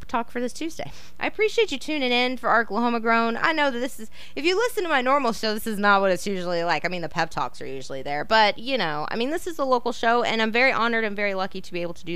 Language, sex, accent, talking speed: English, female, American, 305 wpm